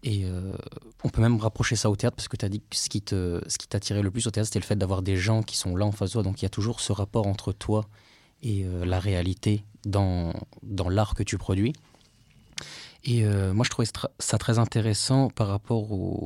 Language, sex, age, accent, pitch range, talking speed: French, male, 20-39, French, 100-120 Hz, 250 wpm